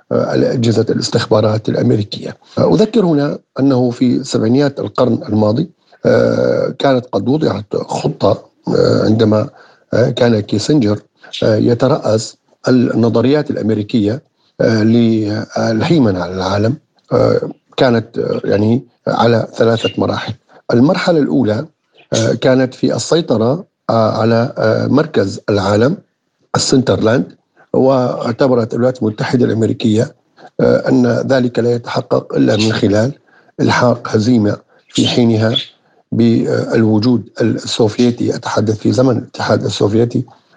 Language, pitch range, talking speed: Arabic, 110-125 Hz, 85 wpm